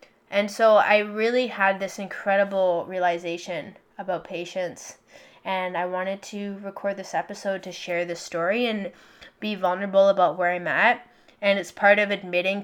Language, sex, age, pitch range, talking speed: English, female, 10-29, 185-210 Hz, 155 wpm